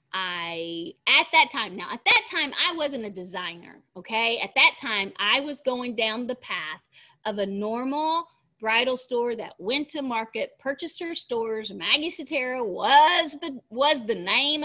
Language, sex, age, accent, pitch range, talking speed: English, female, 30-49, American, 210-355 Hz, 170 wpm